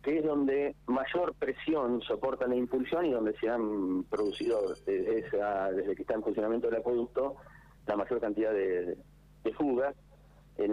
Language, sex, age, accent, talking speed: Spanish, male, 40-59, Argentinian, 160 wpm